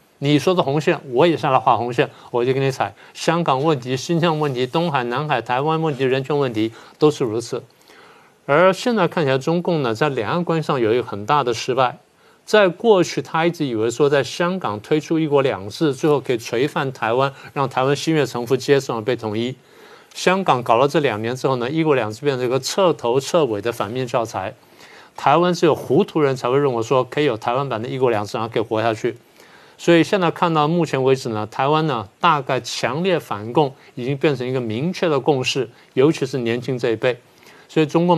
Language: Chinese